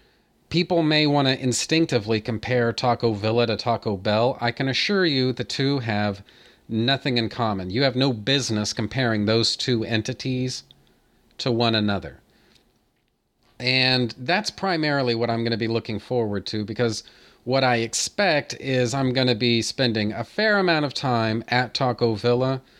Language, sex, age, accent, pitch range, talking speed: English, male, 40-59, American, 115-140 Hz, 160 wpm